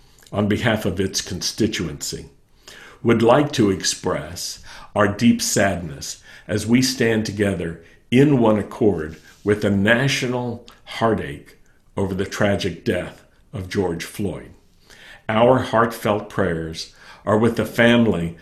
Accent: American